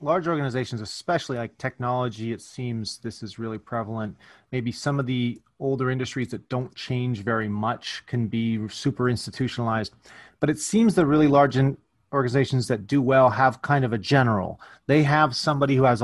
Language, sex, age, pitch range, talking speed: English, male, 30-49, 115-140 Hz, 170 wpm